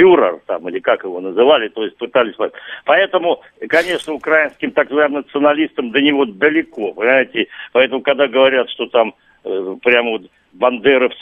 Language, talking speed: Russian, 140 wpm